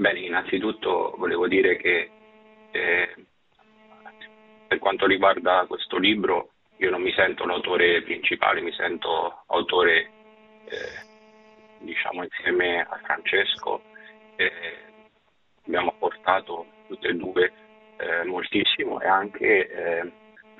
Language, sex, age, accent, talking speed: Italian, male, 30-49, native, 105 wpm